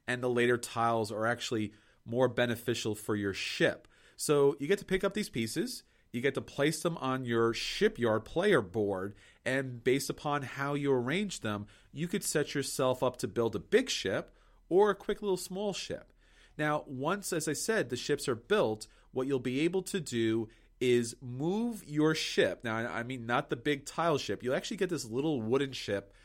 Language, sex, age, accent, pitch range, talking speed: English, male, 30-49, American, 115-160 Hz, 195 wpm